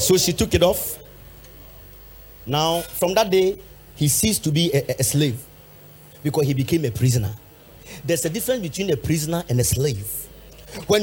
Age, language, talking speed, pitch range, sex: 40-59, English, 170 wpm, 115-180 Hz, male